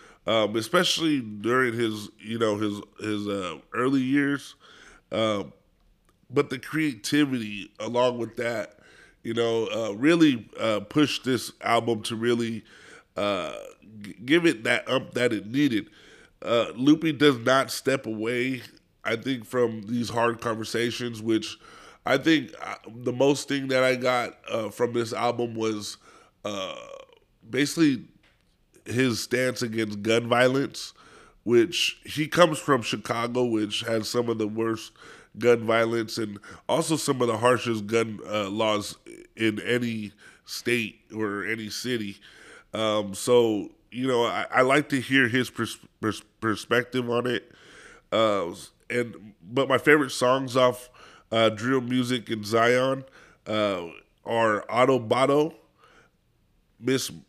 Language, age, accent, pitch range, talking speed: English, 20-39, American, 110-130 Hz, 135 wpm